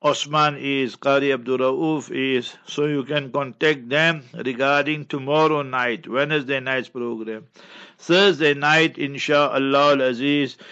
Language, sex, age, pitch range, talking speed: English, male, 60-79, 135-150 Hz, 110 wpm